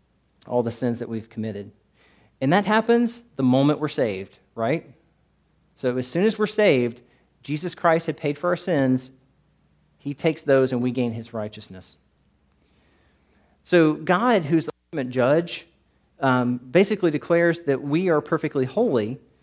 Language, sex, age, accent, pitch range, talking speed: English, male, 40-59, American, 120-155 Hz, 150 wpm